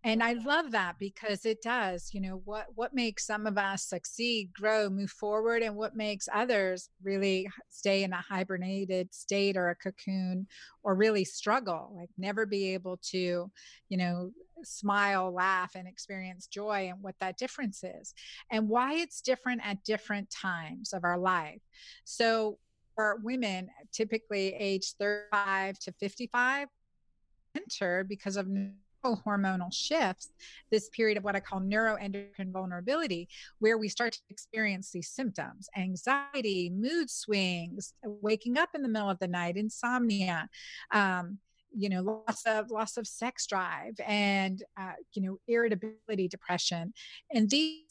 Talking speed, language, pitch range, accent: 150 wpm, English, 190-225 Hz, American